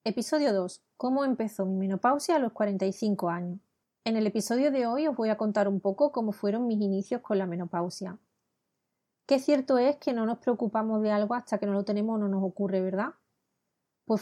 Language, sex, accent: Spanish, female, Spanish